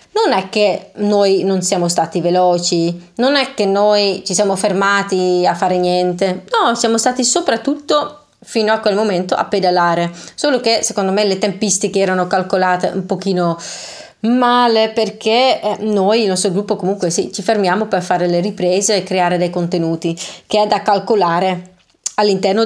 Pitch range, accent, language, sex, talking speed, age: 190-235 Hz, native, Italian, female, 160 wpm, 20-39